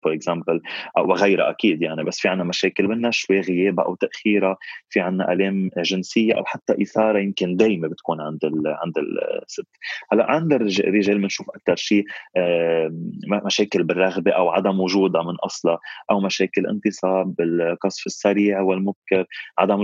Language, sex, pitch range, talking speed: Arabic, male, 90-105 Hz, 135 wpm